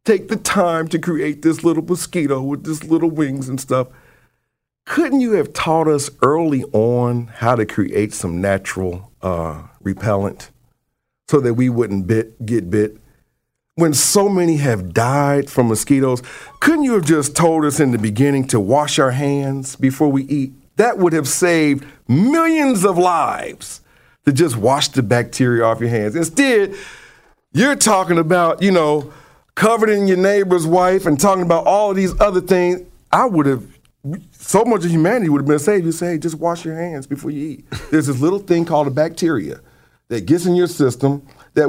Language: English